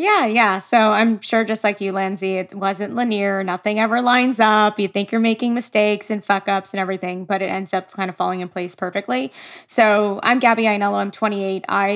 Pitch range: 195-225 Hz